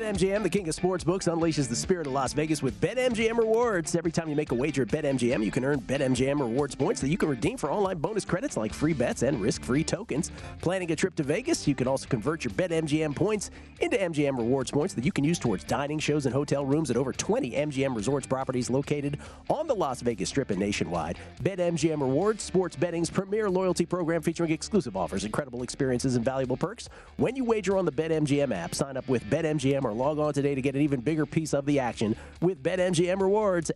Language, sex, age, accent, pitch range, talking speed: English, male, 40-59, American, 135-170 Hz, 220 wpm